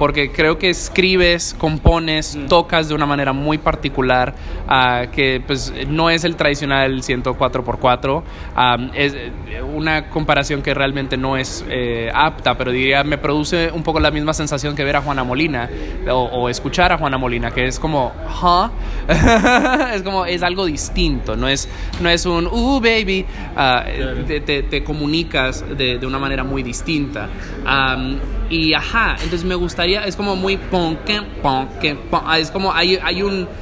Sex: male